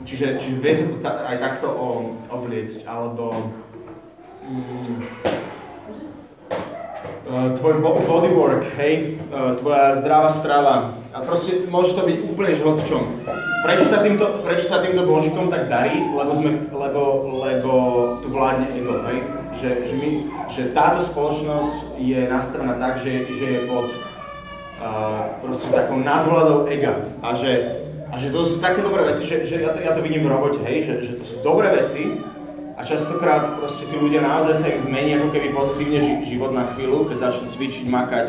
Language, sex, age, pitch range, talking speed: Slovak, male, 30-49, 130-160 Hz, 150 wpm